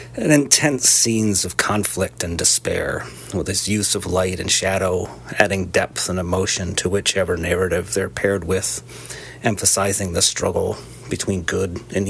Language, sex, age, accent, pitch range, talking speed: English, male, 30-49, American, 95-110 Hz, 150 wpm